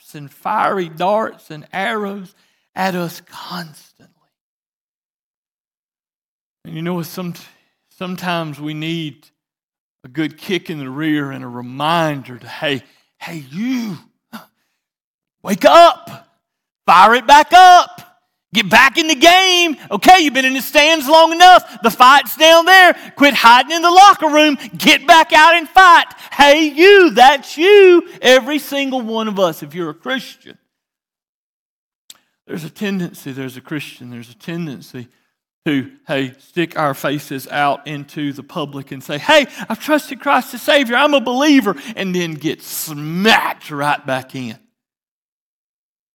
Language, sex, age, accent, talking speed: English, male, 40-59, American, 145 wpm